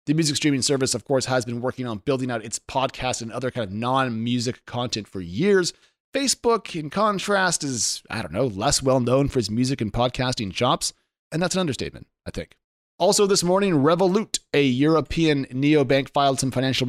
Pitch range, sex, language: 120-160 Hz, male, English